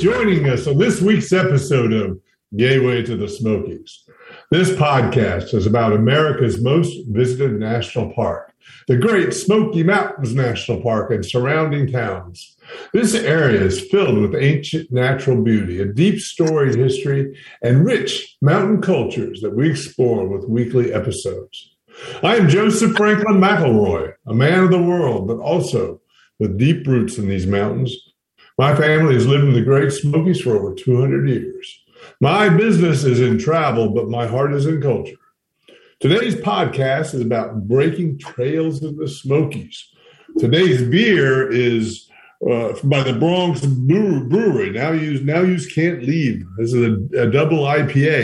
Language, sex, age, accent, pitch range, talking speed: English, male, 60-79, American, 115-160 Hz, 150 wpm